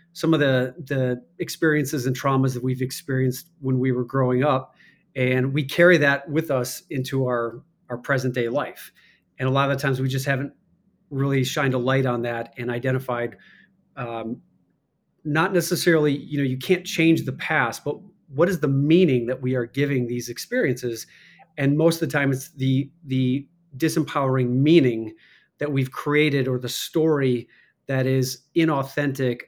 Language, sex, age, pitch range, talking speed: English, male, 40-59, 125-145 Hz, 170 wpm